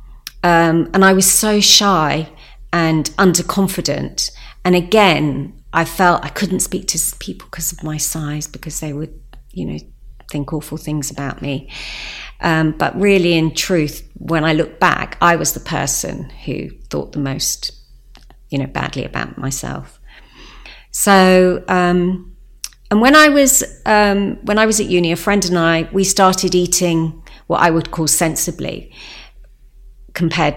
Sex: female